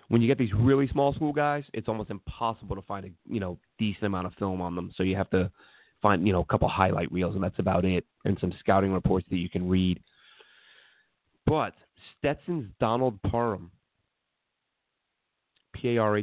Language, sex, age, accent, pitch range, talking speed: English, male, 30-49, American, 95-125 Hz, 190 wpm